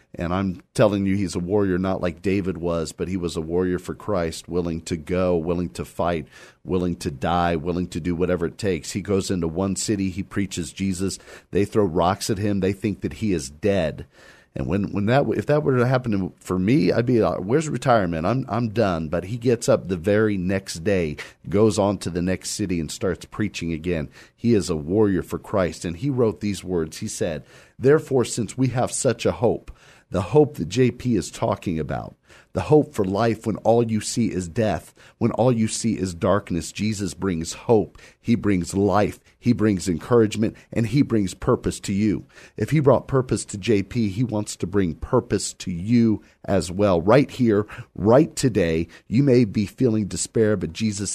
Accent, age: American, 40-59